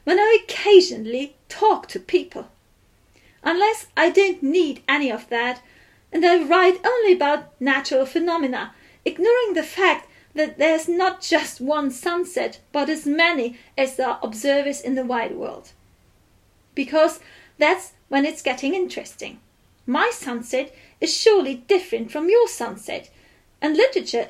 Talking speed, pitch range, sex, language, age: 140 wpm, 270-360 Hz, female, German, 40-59